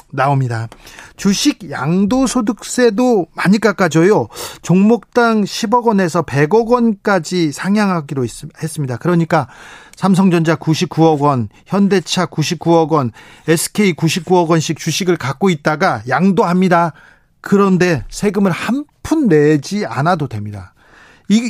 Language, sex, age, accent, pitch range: Korean, male, 40-59, native, 150-210 Hz